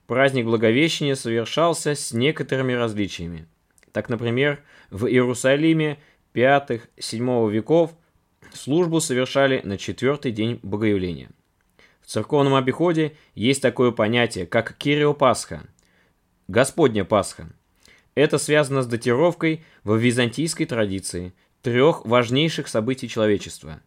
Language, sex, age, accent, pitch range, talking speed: Russian, male, 20-39, native, 110-145 Hz, 100 wpm